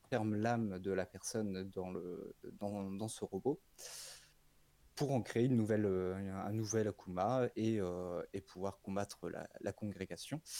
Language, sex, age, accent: French, male, 20-39, French